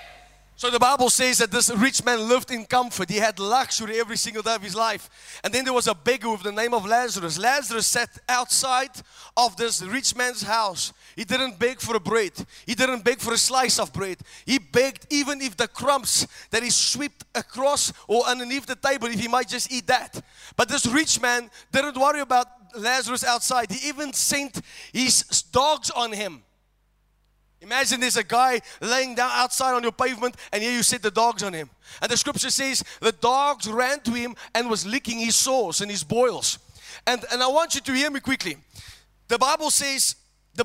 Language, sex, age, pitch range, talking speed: English, male, 20-39, 230-265 Hz, 200 wpm